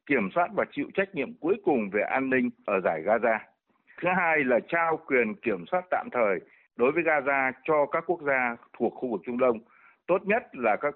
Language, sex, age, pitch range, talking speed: Vietnamese, male, 60-79, 140-200 Hz, 215 wpm